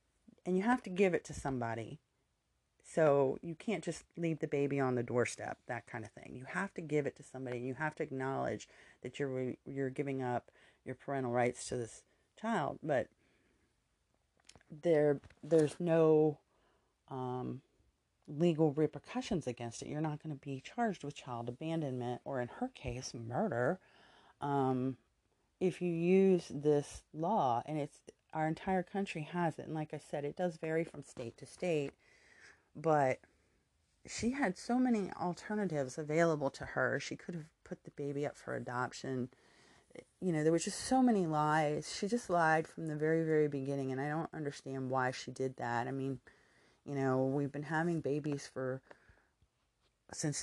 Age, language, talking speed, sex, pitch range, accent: 30-49, English, 170 wpm, female, 130-165 Hz, American